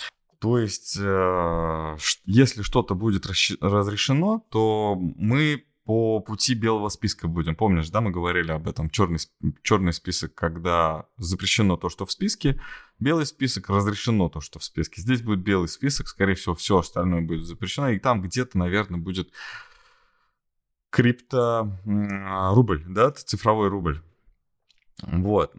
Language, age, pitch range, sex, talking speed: Russian, 20-39, 85-110 Hz, male, 135 wpm